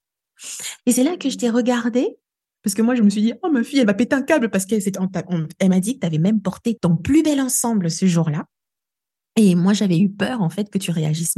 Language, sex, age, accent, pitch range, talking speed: French, female, 20-39, French, 170-215 Hz, 280 wpm